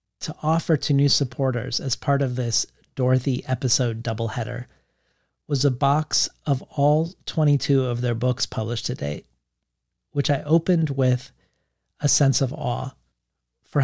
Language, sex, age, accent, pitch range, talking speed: English, male, 40-59, American, 120-140 Hz, 145 wpm